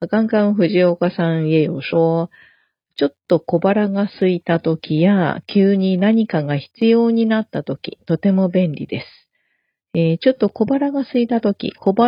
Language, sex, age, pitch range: Japanese, female, 40-59, 165-220 Hz